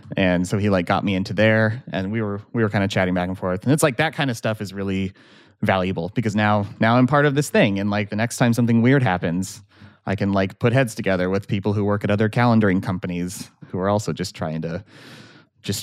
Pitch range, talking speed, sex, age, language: 95-115 Hz, 250 wpm, male, 30-49, English